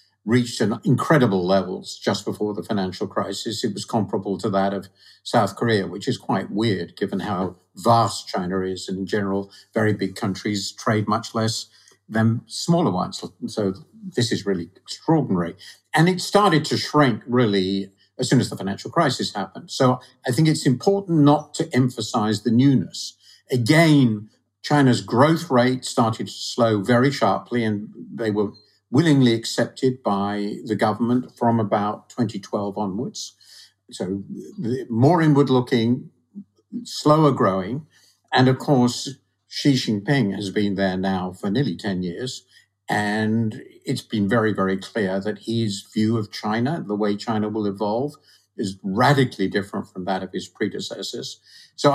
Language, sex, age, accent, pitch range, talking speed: English, male, 50-69, British, 100-130 Hz, 150 wpm